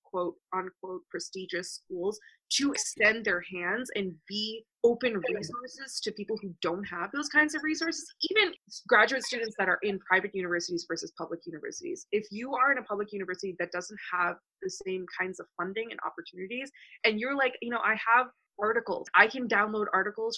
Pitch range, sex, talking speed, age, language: 185-245 Hz, female, 180 wpm, 20-39, English